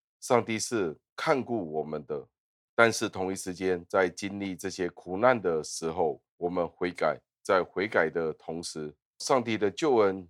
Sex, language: male, Chinese